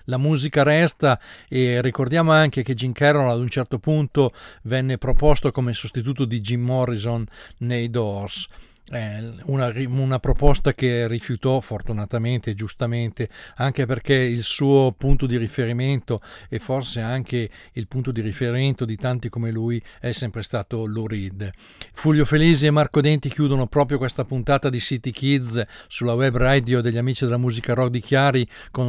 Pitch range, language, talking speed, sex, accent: 115-135 Hz, Italian, 160 wpm, male, native